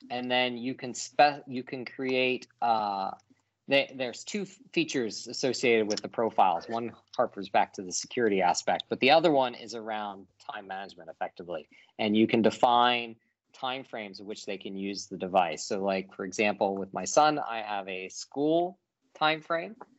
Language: English